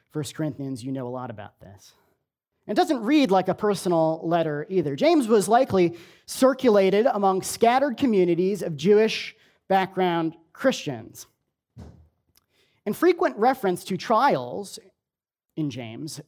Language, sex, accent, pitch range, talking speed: English, male, American, 150-215 Hz, 125 wpm